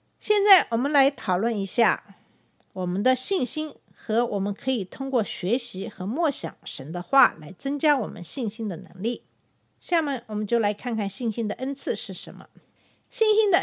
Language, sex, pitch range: Chinese, female, 200-275 Hz